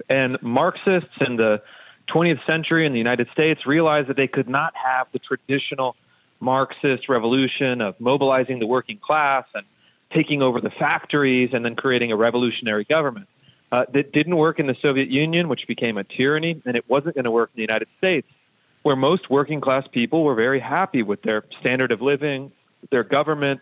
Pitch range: 125-155 Hz